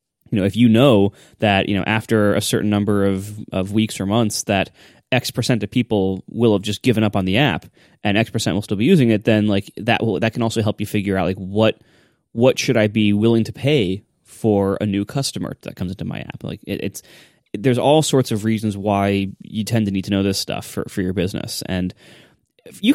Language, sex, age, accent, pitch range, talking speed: English, male, 20-39, American, 100-115 Hz, 235 wpm